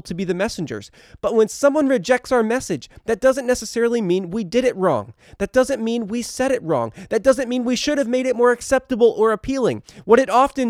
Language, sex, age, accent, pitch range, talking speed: English, male, 20-39, American, 165-230 Hz, 225 wpm